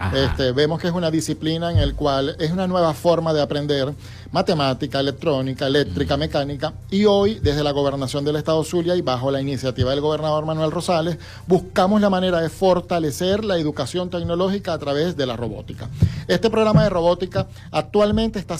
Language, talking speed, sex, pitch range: Spanish, 170 wpm, male, 145-180 Hz